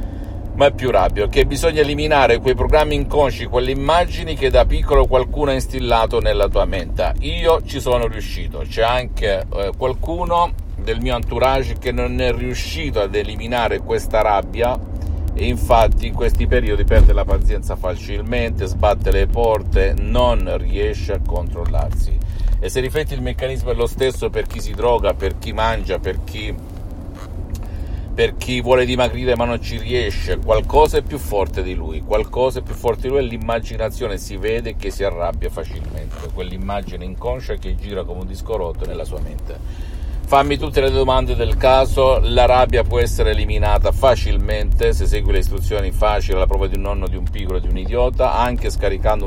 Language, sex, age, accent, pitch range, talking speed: Italian, male, 50-69, native, 90-125 Hz, 170 wpm